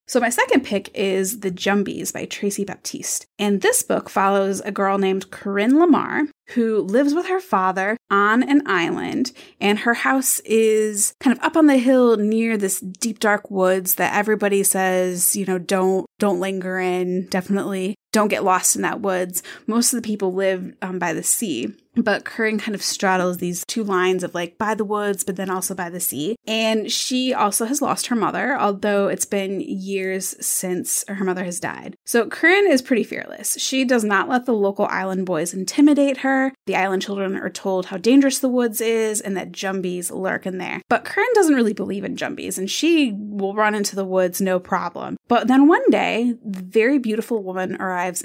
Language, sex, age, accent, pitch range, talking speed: English, female, 20-39, American, 190-235 Hz, 195 wpm